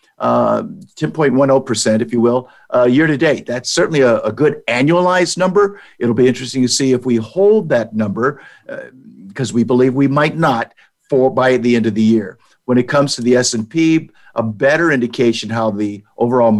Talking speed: 190 wpm